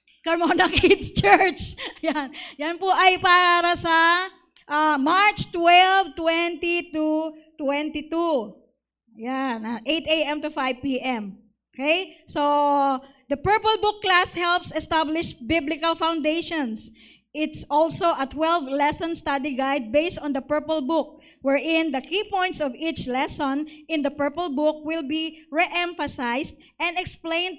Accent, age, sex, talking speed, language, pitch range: Filipino, 20-39, female, 115 wpm, English, 270-335 Hz